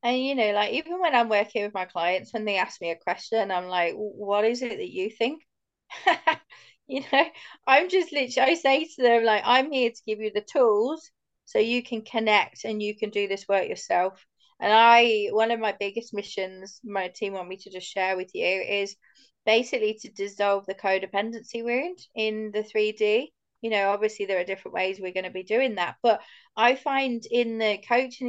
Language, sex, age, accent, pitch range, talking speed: English, female, 20-39, British, 200-245 Hz, 210 wpm